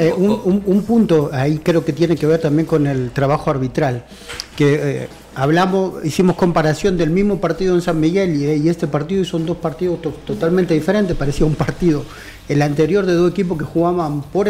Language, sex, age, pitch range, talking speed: Spanish, male, 40-59, 150-180 Hz, 205 wpm